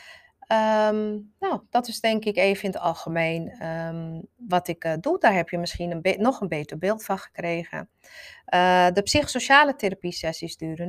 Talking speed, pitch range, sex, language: 180 wpm, 165-215 Hz, female, Dutch